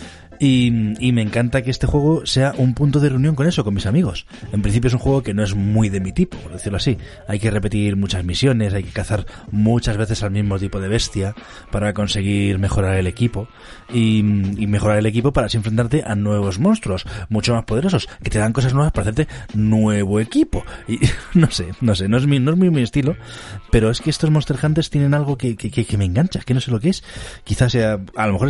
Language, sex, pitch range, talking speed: Spanish, male, 100-125 Hz, 240 wpm